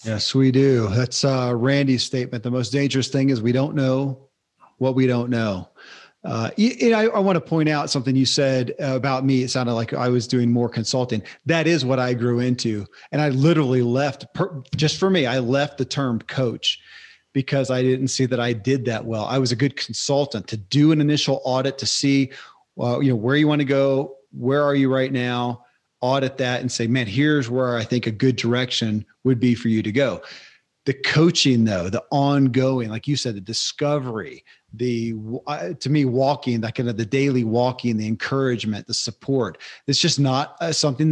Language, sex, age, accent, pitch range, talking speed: English, male, 40-59, American, 120-140 Hz, 205 wpm